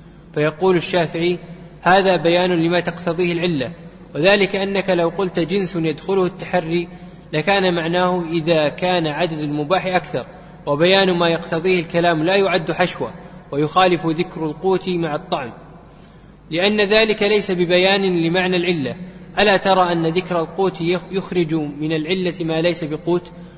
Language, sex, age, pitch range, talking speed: Arabic, male, 20-39, 165-185 Hz, 125 wpm